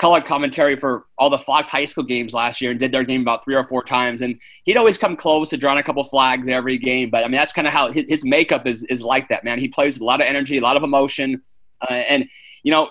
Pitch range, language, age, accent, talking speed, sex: 135-175 Hz, English, 30-49, American, 285 wpm, male